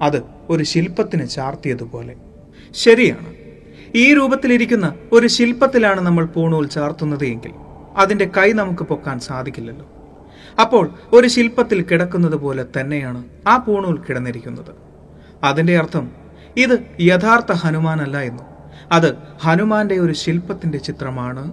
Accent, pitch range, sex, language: native, 135-205 Hz, male, Malayalam